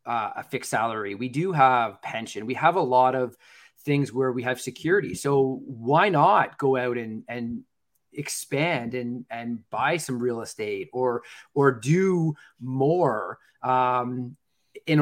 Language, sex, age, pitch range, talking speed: English, male, 30-49, 130-160 Hz, 150 wpm